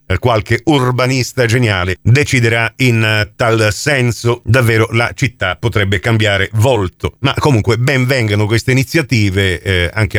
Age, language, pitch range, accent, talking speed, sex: 40-59, Italian, 110-165 Hz, native, 125 wpm, male